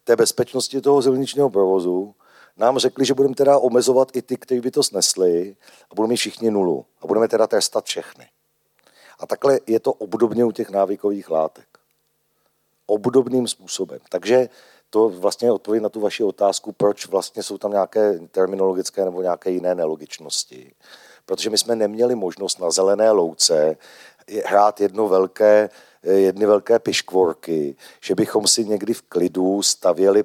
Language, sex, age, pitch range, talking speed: Slovak, male, 40-59, 95-115 Hz, 150 wpm